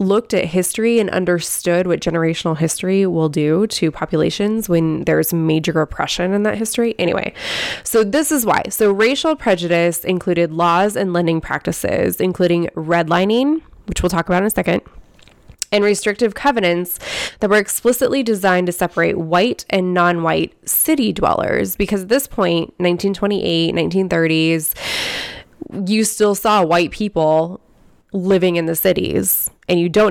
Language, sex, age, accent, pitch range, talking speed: English, female, 20-39, American, 170-205 Hz, 150 wpm